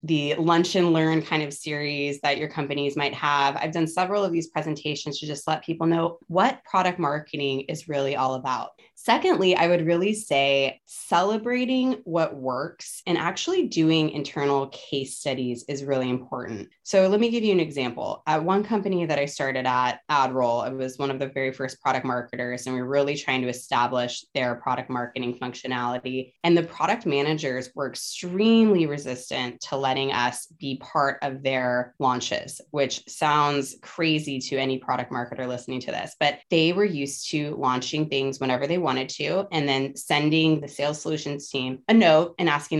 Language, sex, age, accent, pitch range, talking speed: English, female, 20-39, American, 135-170 Hz, 180 wpm